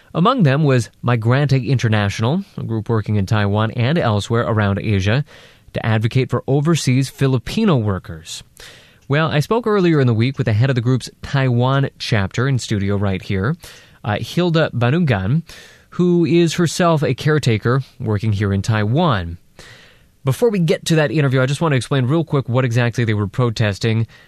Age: 20-39